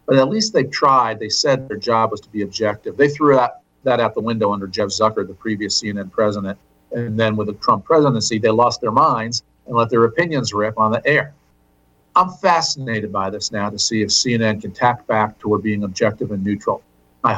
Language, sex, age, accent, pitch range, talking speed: English, male, 50-69, American, 110-160 Hz, 220 wpm